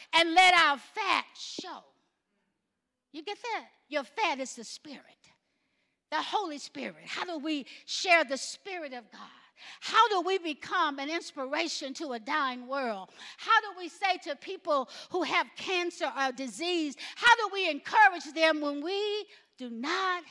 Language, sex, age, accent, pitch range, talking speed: English, female, 50-69, American, 265-350 Hz, 160 wpm